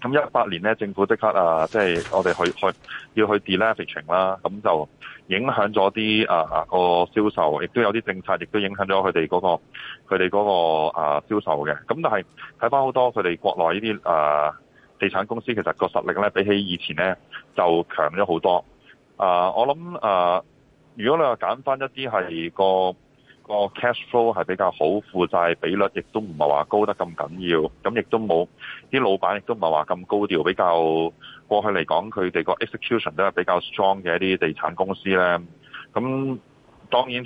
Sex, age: male, 20-39